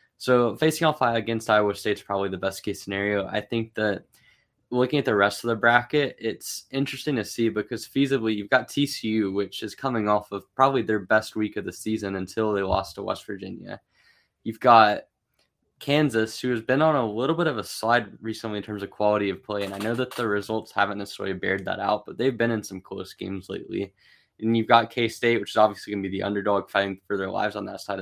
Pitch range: 100-115 Hz